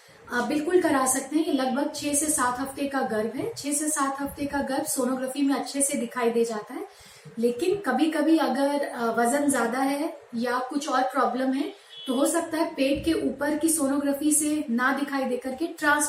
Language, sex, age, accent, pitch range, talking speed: Hindi, female, 30-49, native, 245-295 Hz, 205 wpm